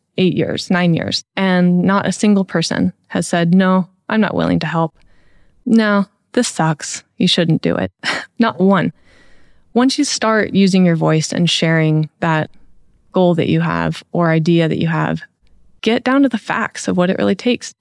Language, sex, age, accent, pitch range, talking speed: English, female, 20-39, American, 170-200 Hz, 180 wpm